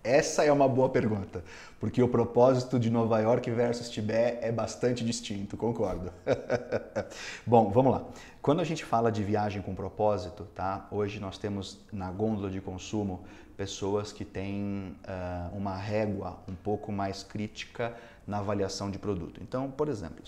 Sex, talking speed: male, 155 wpm